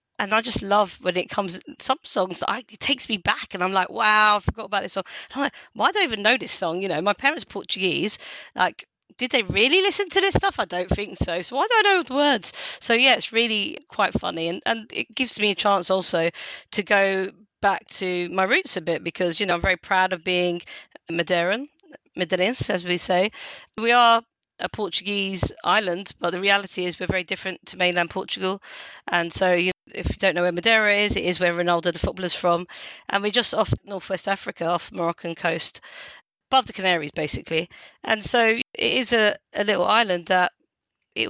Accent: British